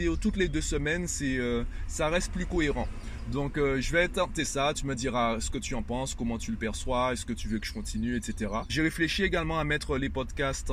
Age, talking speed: 20-39, 240 wpm